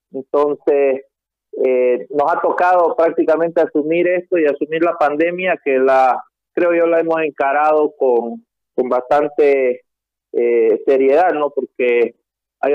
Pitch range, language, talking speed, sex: 135-185 Hz, Spanish, 125 wpm, male